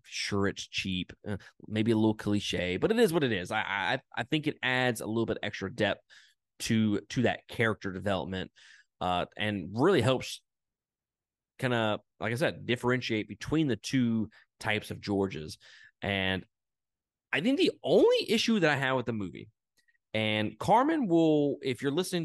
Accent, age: American, 20-39